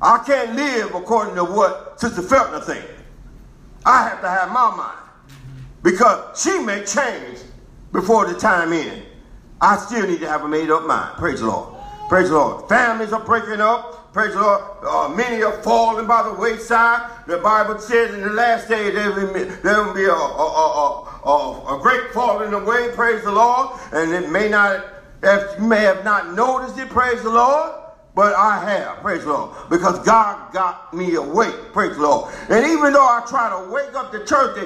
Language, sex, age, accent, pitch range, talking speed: English, male, 50-69, American, 185-240 Hz, 205 wpm